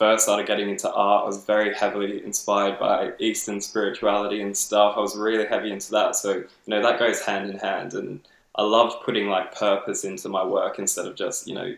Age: 10-29